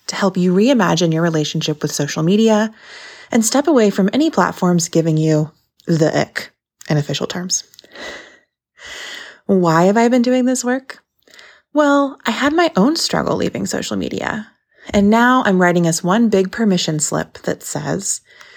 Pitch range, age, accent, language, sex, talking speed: 165-230 Hz, 20-39, American, English, female, 160 wpm